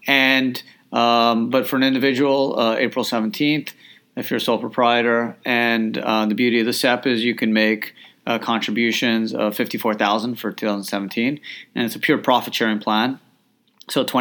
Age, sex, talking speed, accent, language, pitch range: 30-49, male, 165 wpm, American, English, 105-125 Hz